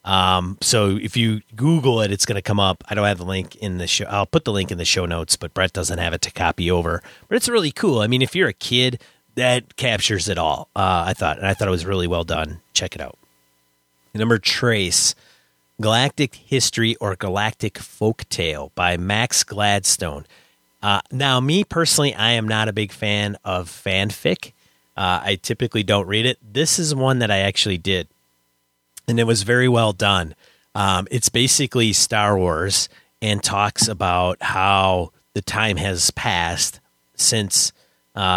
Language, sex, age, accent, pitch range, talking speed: English, male, 30-49, American, 90-115 Hz, 185 wpm